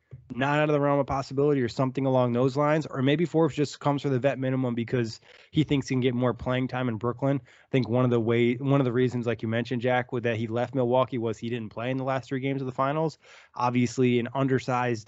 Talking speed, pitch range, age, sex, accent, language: 265 wpm, 120-140 Hz, 20-39, male, American, English